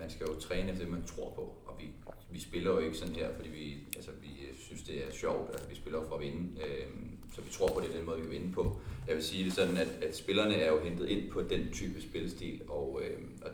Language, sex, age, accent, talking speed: Danish, male, 30-49, native, 265 wpm